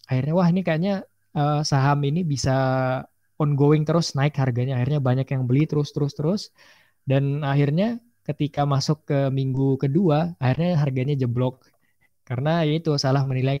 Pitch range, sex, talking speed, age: 120-145 Hz, male, 130 wpm, 20-39